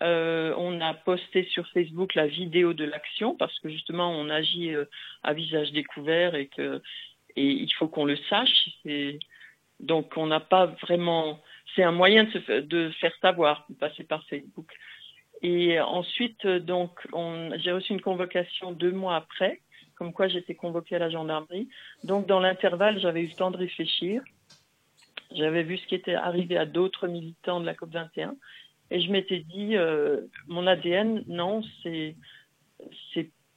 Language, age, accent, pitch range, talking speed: French, 40-59, French, 160-185 Hz, 165 wpm